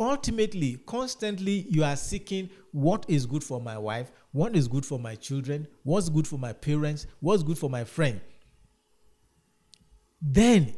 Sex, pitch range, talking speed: male, 125-180 Hz, 155 wpm